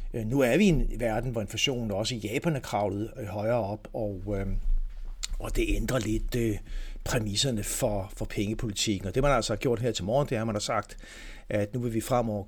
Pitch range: 105-115 Hz